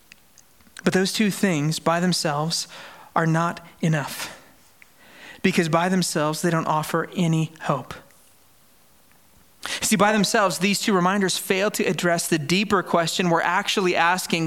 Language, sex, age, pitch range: English, male, 30-49, 155-210 Hz